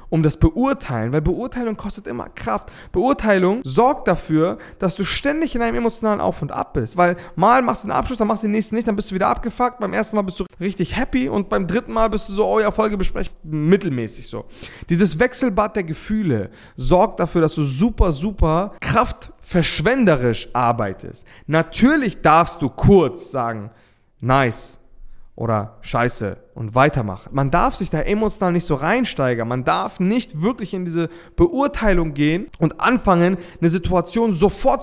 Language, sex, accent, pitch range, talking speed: German, male, German, 155-215 Hz, 170 wpm